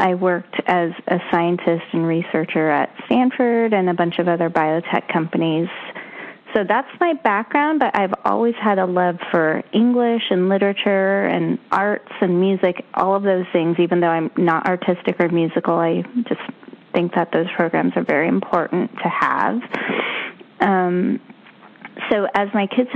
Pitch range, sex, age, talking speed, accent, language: 170-215 Hz, female, 20-39, 160 wpm, American, English